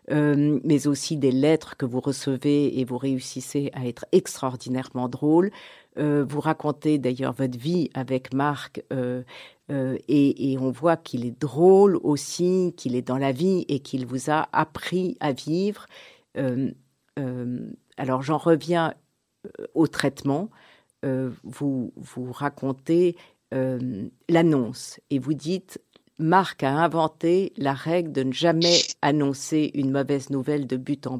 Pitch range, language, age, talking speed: 130-160 Hz, French, 50-69, 145 wpm